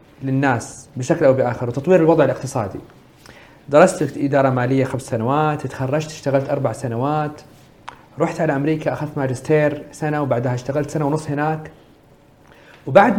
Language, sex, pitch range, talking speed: Arabic, male, 130-165 Hz, 125 wpm